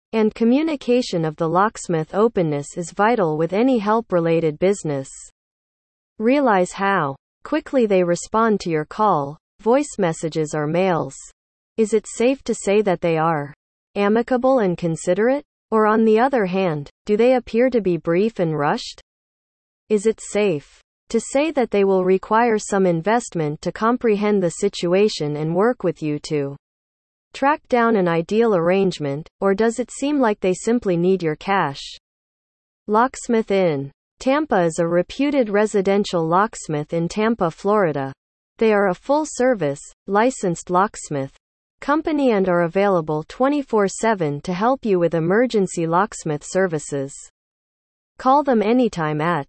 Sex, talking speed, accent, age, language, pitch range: female, 145 wpm, American, 30-49, English, 165-230 Hz